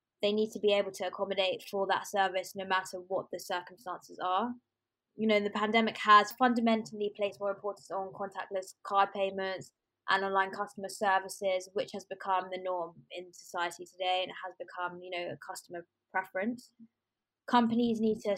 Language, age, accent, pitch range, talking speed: English, 20-39, British, 185-210 Hz, 175 wpm